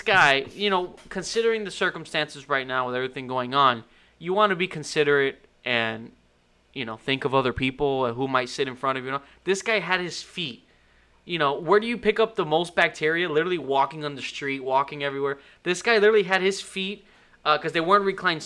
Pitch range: 135-180 Hz